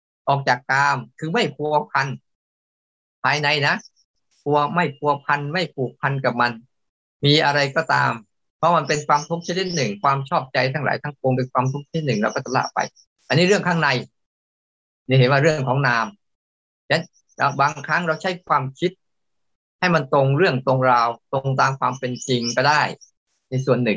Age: 20-39